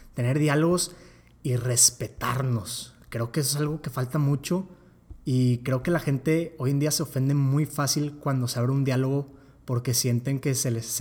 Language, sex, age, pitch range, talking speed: Spanish, male, 30-49, 125-155 Hz, 185 wpm